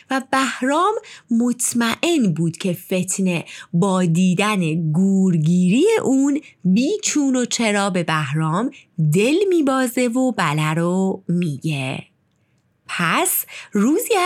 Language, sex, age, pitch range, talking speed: Persian, female, 30-49, 170-275 Hz, 95 wpm